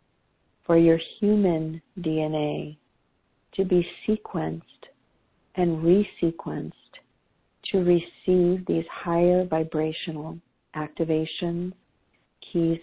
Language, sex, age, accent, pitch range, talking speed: English, female, 50-69, American, 155-175 Hz, 75 wpm